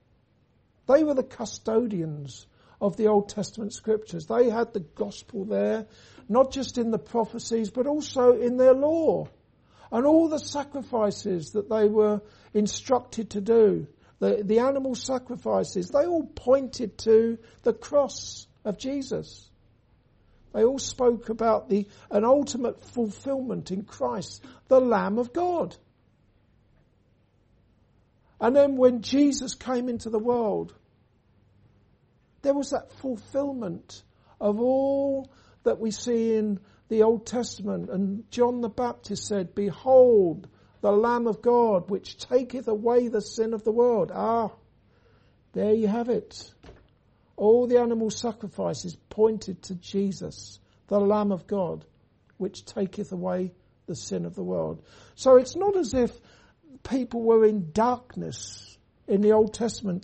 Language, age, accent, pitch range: English, 60-79, British, 185-245 Hz